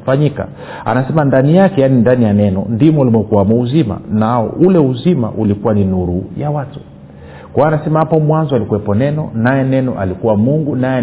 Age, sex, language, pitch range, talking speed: 50-69, male, Swahili, 100-140 Hz, 175 wpm